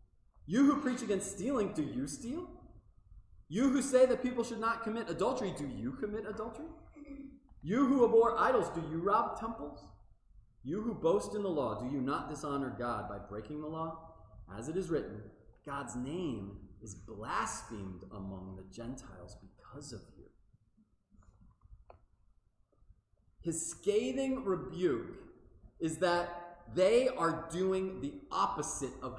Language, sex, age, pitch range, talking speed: English, male, 30-49, 105-175 Hz, 140 wpm